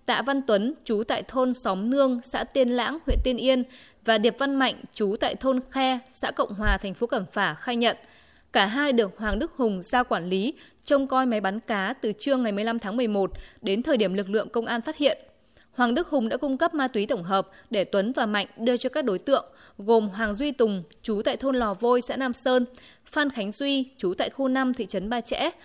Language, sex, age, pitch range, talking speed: Vietnamese, female, 20-39, 215-265 Hz, 240 wpm